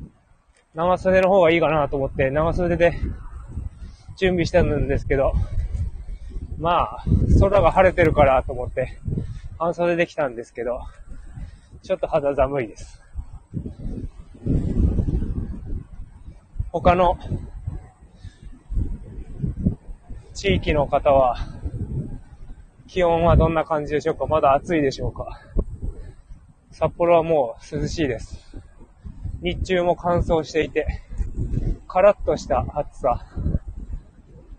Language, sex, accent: Japanese, male, native